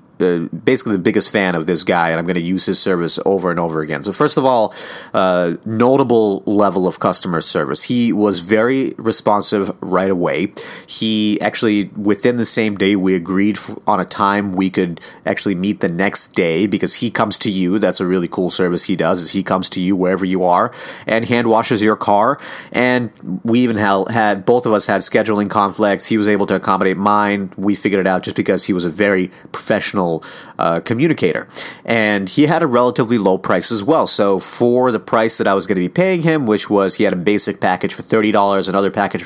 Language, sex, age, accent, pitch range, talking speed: English, male, 30-49, American, 95-110 Hz, 215 wpm